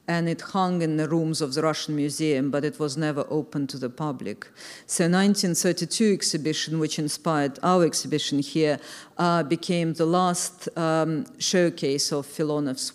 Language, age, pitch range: English, 50-69, 150-175 Hz